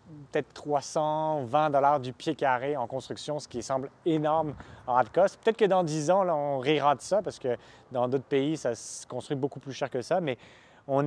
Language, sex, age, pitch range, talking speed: French, male, 30-49, 125-150 Hz, 215 wpm